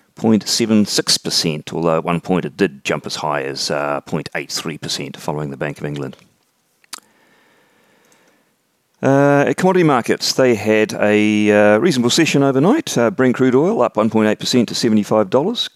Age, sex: 40-59, male